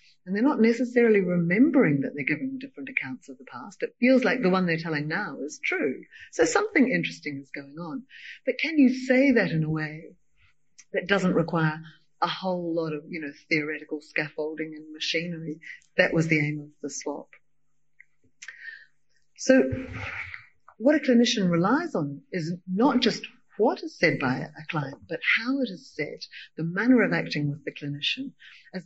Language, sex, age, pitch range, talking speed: English, female, 40-59, 155-235 Hz, 175 wpm